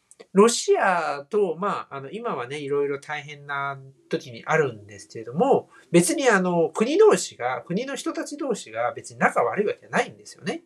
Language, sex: Japanese, male